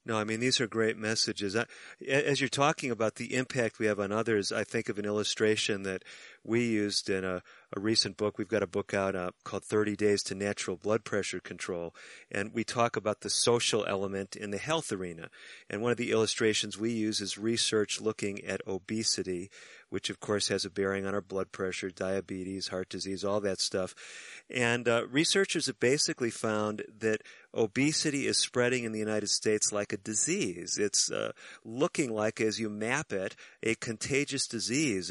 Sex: male